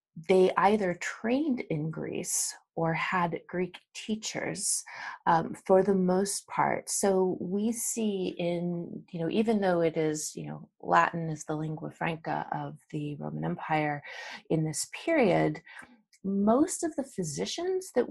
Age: 30-49